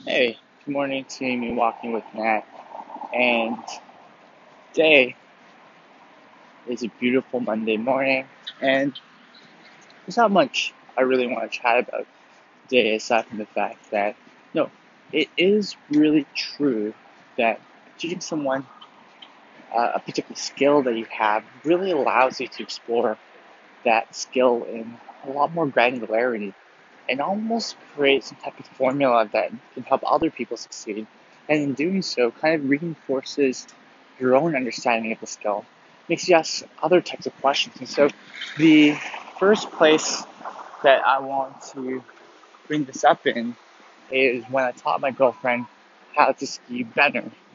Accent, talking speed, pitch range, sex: American, 145 wpm, 120-150 Hz, male